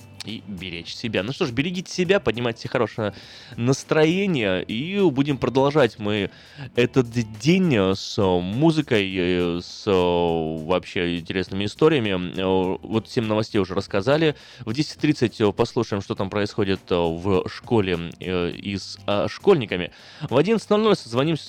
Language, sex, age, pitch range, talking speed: Russian, male, 20-39, 100-140 Hz, 115 wpm